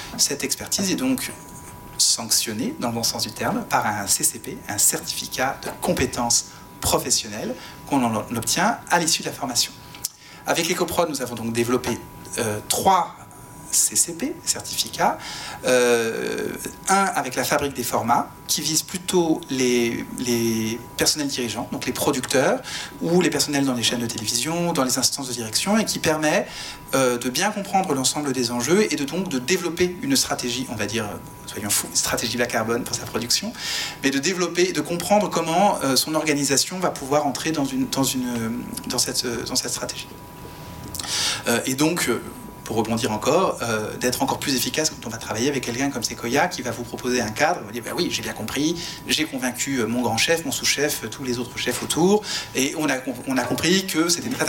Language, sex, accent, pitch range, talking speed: French, male, French, 120-165 Hz, 190 wpm